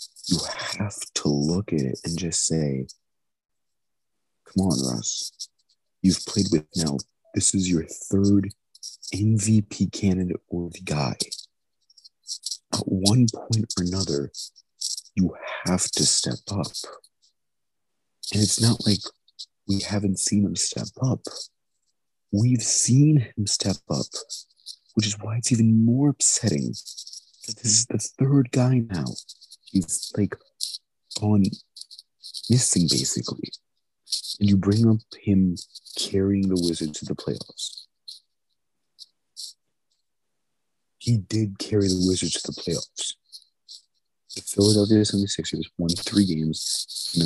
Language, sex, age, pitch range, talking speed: English, male, 40-59, 85-105 Hz, 120 wpm